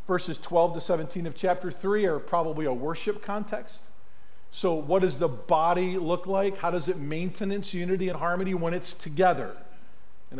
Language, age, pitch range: English, 50-69, 160-200 Hz